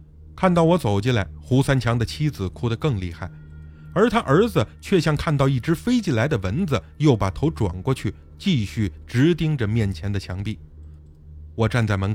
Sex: male